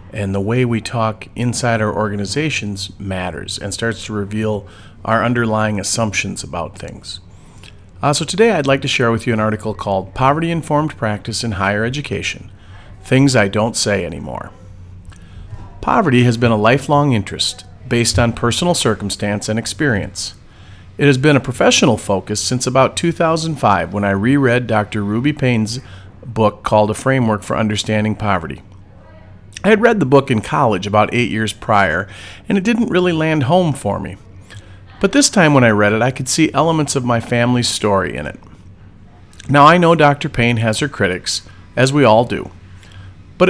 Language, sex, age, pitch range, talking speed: English, male, 40-59, 100-135 Hz, 170 wpm